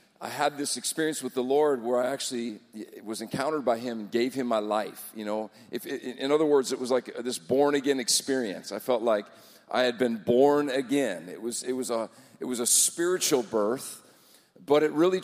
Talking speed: 205 wpm